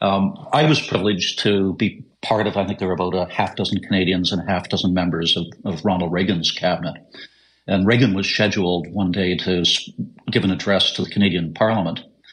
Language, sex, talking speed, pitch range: English, male, 200 wpm, 90-105 Hz